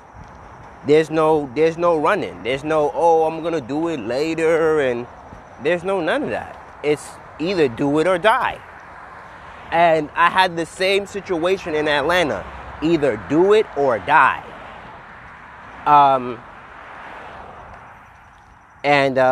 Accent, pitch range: American, 110-165 Hz